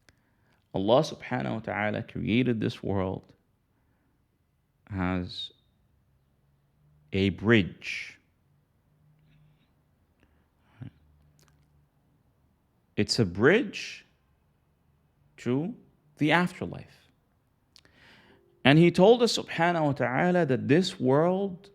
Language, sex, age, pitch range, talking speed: English, male, 40-59, 105-165 Hz, 70 wpm